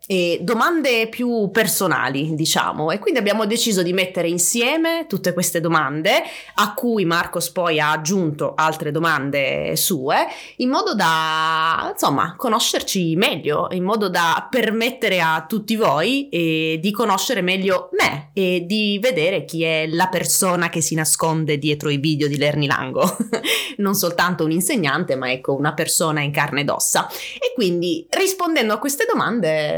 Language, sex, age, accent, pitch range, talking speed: Italian, female, 20-39, native, 160-220 Hz, 150 wpm